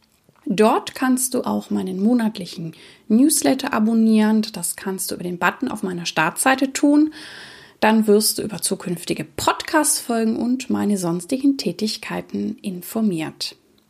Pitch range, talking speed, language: 190-240 Hz, 130 wpm, German